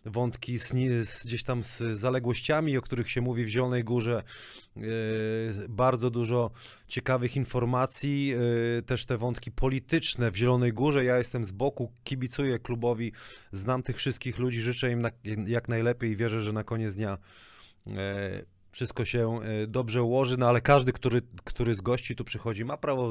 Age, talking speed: 30-49, 150 wpm